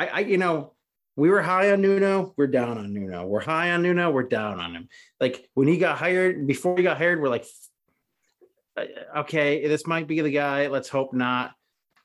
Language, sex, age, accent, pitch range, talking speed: English, male, 30-49, American, 120-160 Hz, 205 wpm